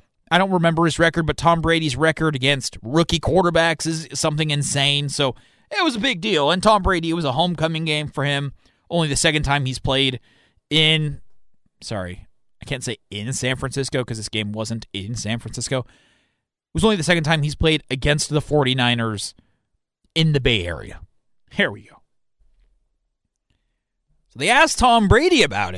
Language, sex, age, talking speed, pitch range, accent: English, male, 30-49, 175 wpm, 120-165 Hz, American